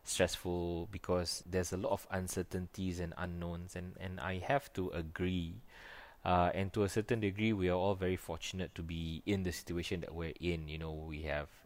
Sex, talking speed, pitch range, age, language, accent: male, 195 wpm, 90-110 Hz, 20-39, English, Malaysian